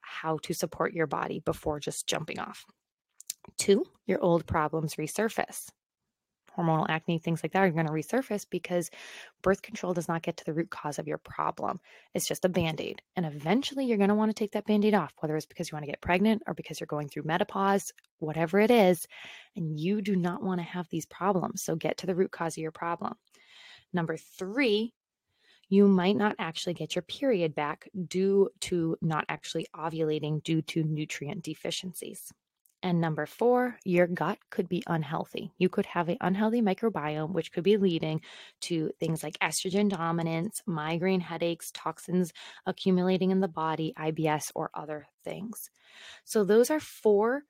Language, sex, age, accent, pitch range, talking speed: English, female, 20-39, American, 160-200 Hz, 180 wpm